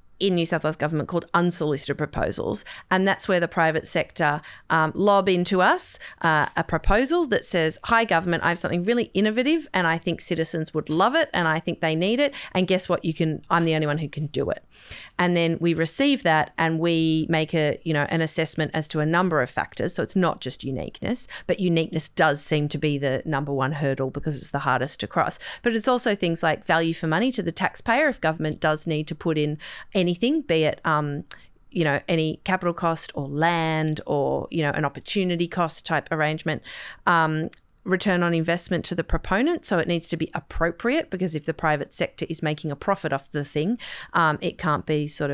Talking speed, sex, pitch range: 215 wpm, female, 155-180 Hz